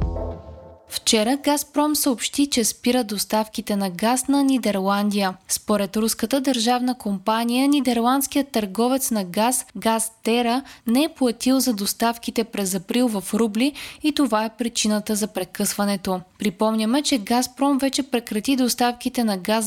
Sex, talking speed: female, 130 wpm